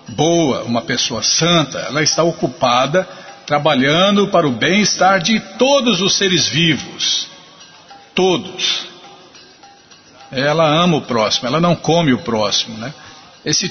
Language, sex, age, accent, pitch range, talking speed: Portuguese, male, 50-69, Brazilian, 145-195 Hz, 125 wpm